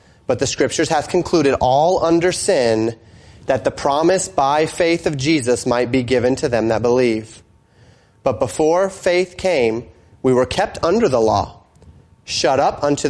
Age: 30-49